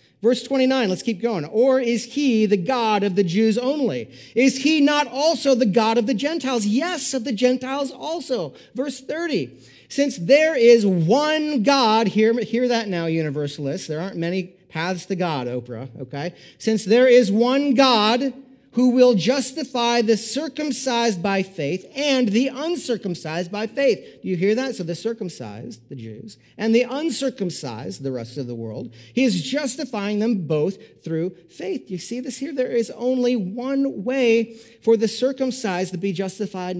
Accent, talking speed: American, 170 wpm